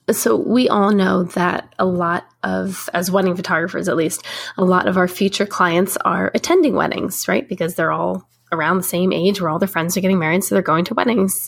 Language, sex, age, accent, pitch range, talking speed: English, female, 20-39, American, 180-230 Hz, 220 wpm